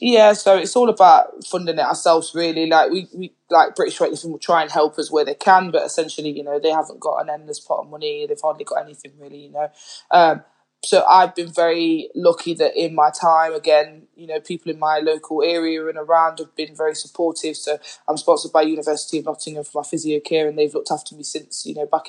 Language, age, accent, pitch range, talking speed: English, 20-39, British, 150-170 Hz, 235 wpm